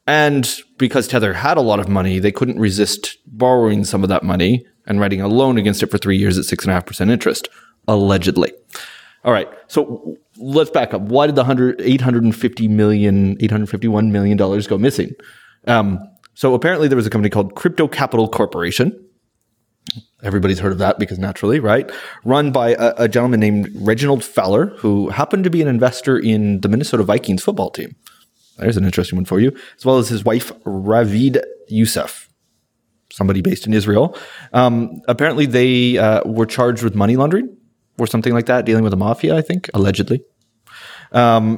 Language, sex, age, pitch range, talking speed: English, male, 30-49, 100-125 Hz, 175 wpm